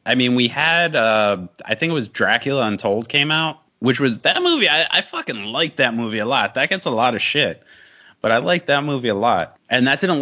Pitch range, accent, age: 95-135 Hz, American, 30-49